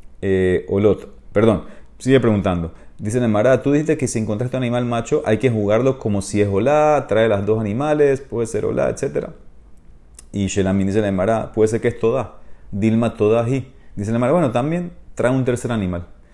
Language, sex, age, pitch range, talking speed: Spanish, male, 30-49, 100-145 Hz, 185 wpm